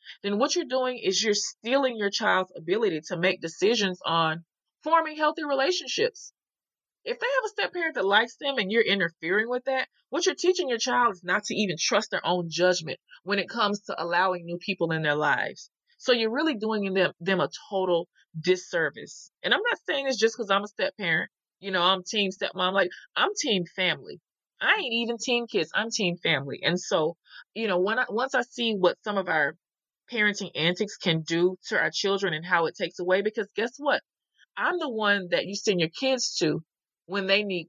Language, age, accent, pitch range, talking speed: English, 30-49, American, 175-235 Hz, 210 wpm